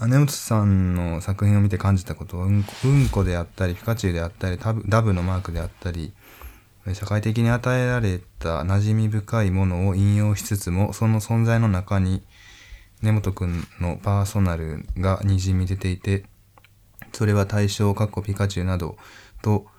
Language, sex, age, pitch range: Japanese, male, 20-39, 90-100 Hz